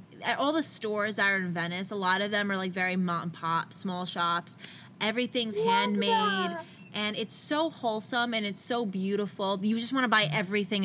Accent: American